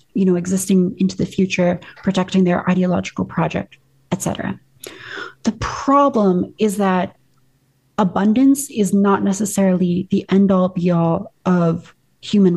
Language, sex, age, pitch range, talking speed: English, female, 30-49, 180-205 Hz, 125 wpm